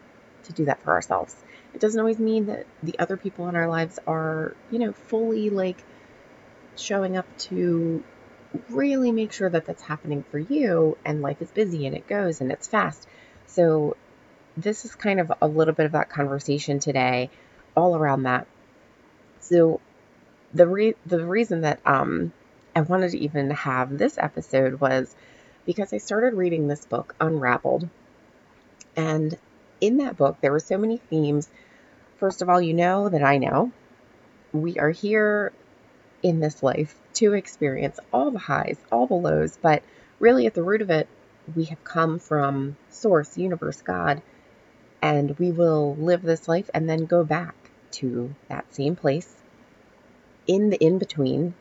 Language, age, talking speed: English, 30-49, 165 wpm